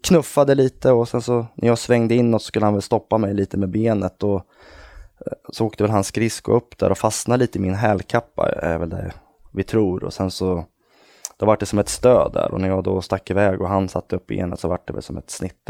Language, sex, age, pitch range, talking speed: Swedish, male, 20-39, 95-115 Hz, 250 wpm